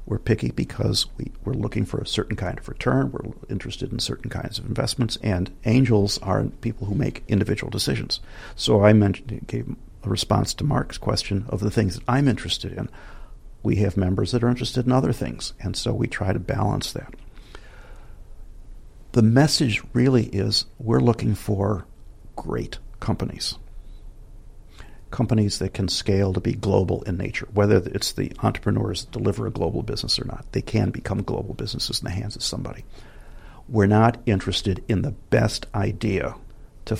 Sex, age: male, 50-69